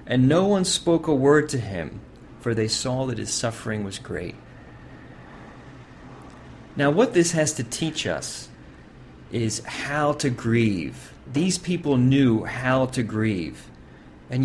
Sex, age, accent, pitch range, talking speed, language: male, 40-59, American, 110-140 Hz, 140 wpm, English